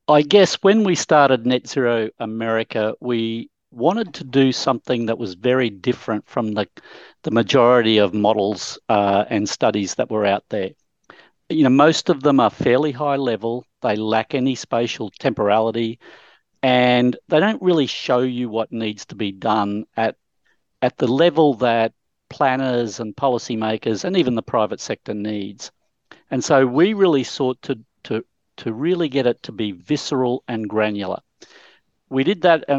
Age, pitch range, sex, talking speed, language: 50-69, 110-135 Hz, male, 160 wpm, English